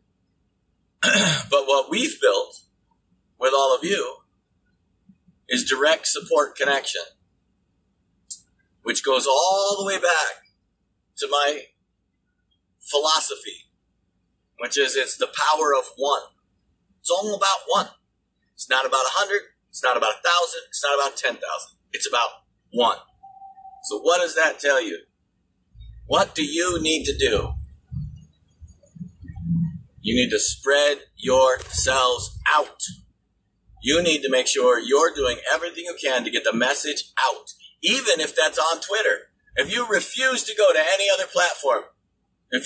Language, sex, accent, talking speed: English, male, American, 135 wpm